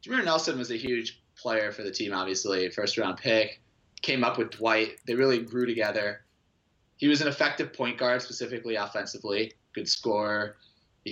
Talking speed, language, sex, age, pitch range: 165 wpm, English, male, 20-39, 105-130 Hz